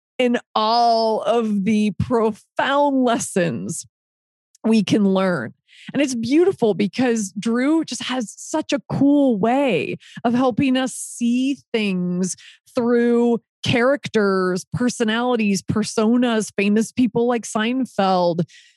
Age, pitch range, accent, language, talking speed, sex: 30-49, 195-240 Hz, American, English, 105 wpm, female